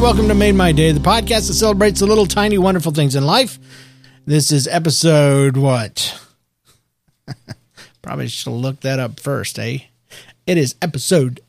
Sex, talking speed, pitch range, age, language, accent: male, 155 wpm, 125-185 Hz, 40-59, English, American